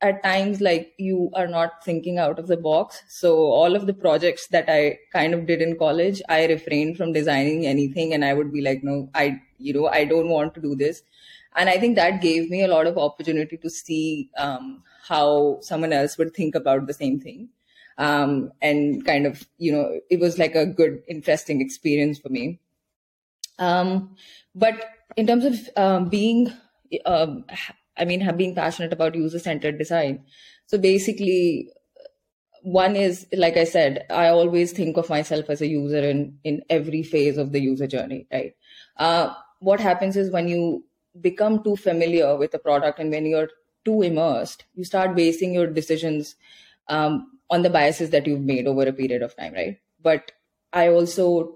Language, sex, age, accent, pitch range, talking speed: English, female, 20-39, Indian, 150-180 Hz, 185 wpm